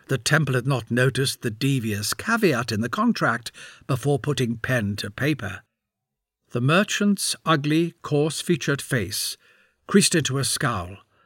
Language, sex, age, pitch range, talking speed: English, male, 60-79, 115-170 Hz, 135 wpm